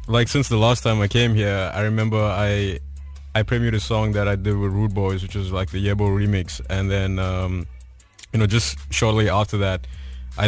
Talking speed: 210 wpm